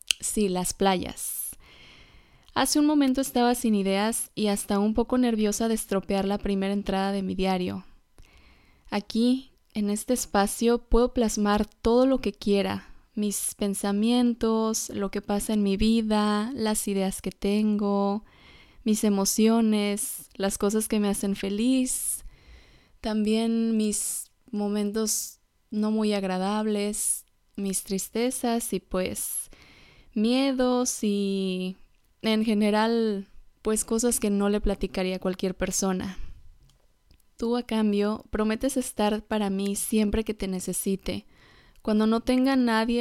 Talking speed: 125 wpm